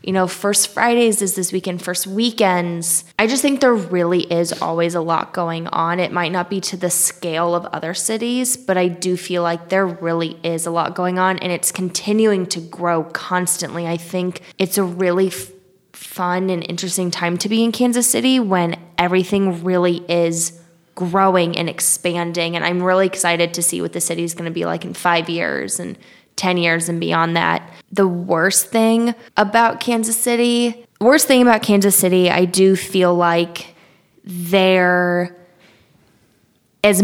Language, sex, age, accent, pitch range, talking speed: English, female, 20-39, American, 170-200 Hz, 175 wpm